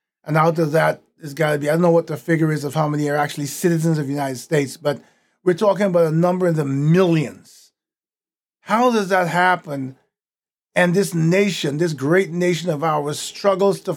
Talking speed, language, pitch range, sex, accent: 205 wpm, English, 155-195 Hz, male, American